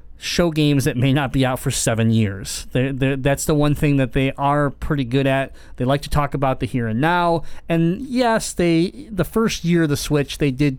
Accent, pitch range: American, 135-180 Hz